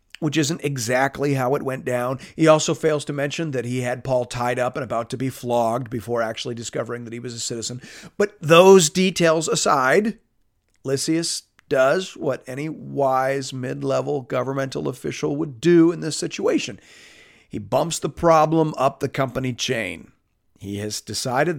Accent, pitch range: American, 115-150 Hz